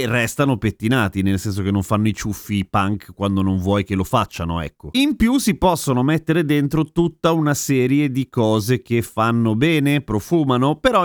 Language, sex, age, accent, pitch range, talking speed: Italian, male, 30-49, native, 110-150 Hz, 180 wpm